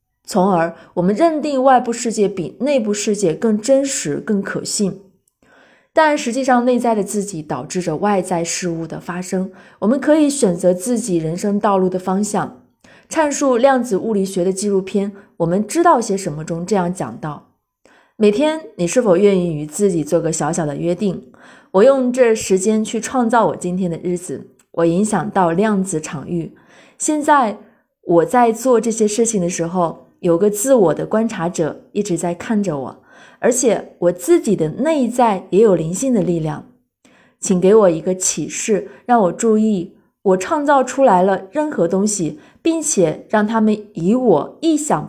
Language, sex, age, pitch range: Chinese, female, 20-39, 180-245 Hz